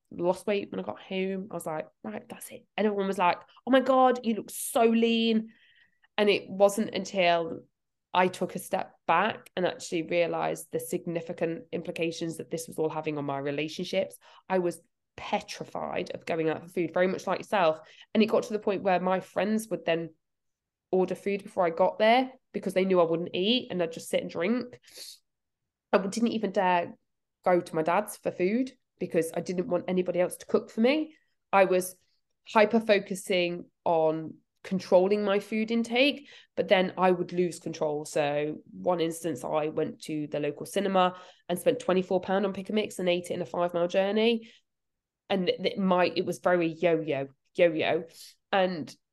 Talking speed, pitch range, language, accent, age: 190 wpm, 170-210 Hz, English, British, 20-39